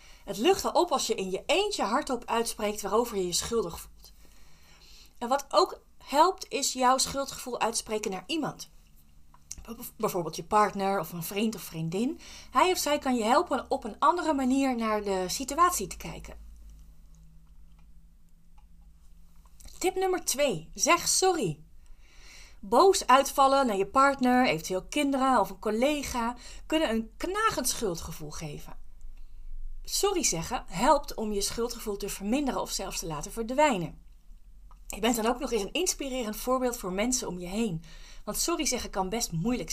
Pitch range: 175-265 Hz